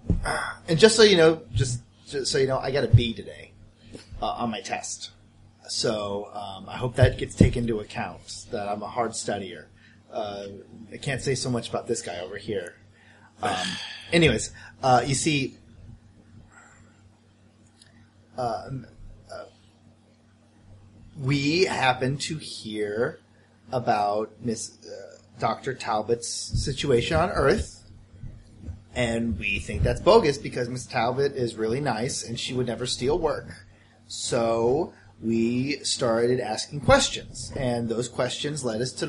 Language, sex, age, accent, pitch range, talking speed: English, male, 30-49, American, 110-130 Hz, 140 wpm